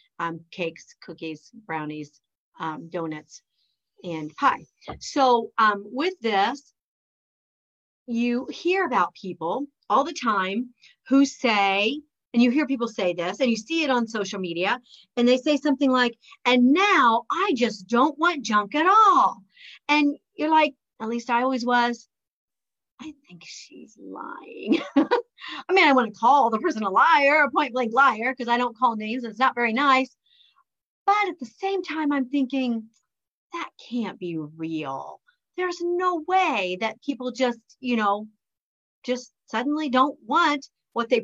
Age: 40-59